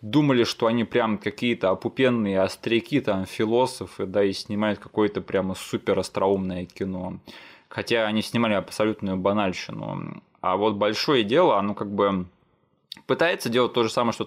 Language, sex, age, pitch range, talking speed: Russian, male, 20-39, 100-115 Hz, 145 wpm